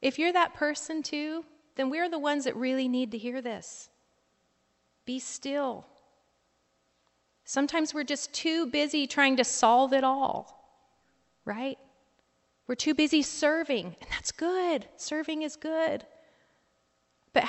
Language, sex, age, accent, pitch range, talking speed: English, female, 30-49, American, 205-275 Hz, 135 wpm